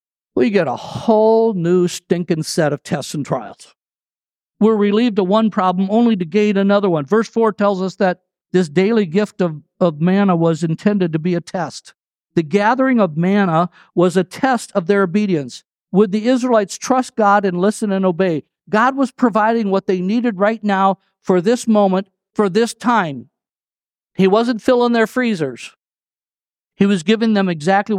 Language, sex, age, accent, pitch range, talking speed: English, male, 50-69, American, 175-215 Hz, 175 wpm